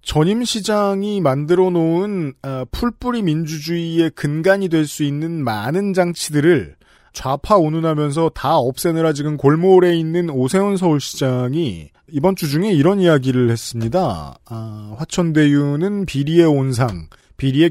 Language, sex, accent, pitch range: Korean, male, native, 130-190 Hz